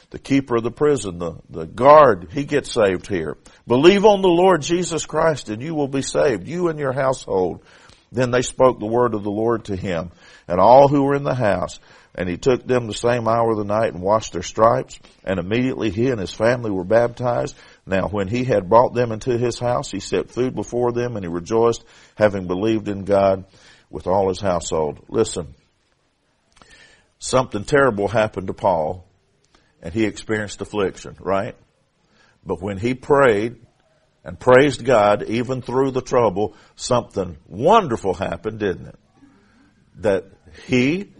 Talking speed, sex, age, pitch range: 175 wpm, male, 50-69, 105-140 Hz